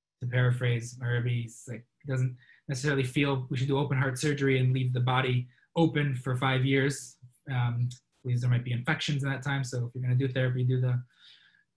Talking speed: 195 wpm